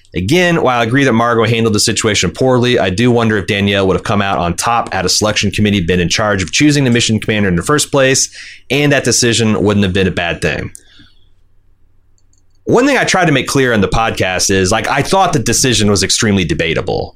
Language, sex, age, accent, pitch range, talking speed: English, male, 30-49, American, 95-125 Hz, 225 wpm